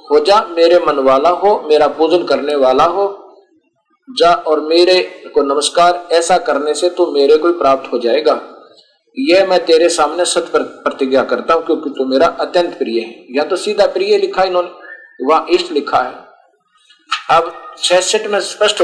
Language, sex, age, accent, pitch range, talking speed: Hindi, male, 50-69, native, 165-270 Hz, 70 wpm